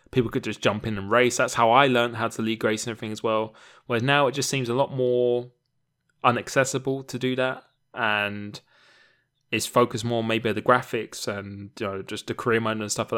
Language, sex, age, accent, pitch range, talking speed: English, male, 20-39, British, 105-125 Hz, 230 wpm